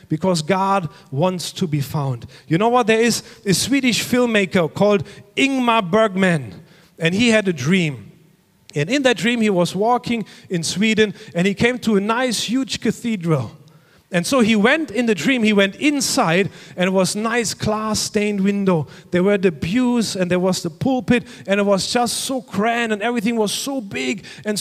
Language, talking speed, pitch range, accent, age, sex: English, 190 wpm, 185-245 Hz, German, 40-59, male